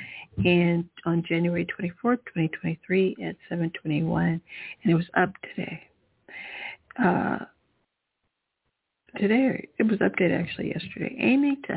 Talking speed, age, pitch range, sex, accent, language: 105 wpm, 60-79, 170-210 Hz, female, American, English